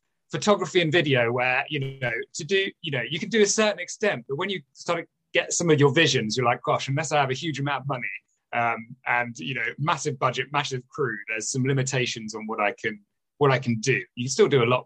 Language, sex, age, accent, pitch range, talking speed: English, male, 30-49, British, 115-145 Hz, 250 wpm